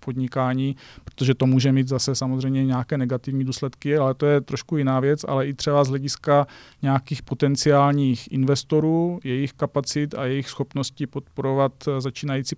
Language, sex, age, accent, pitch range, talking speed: Czech, male, 40-59, native, 130-140 Hz, 150 wpm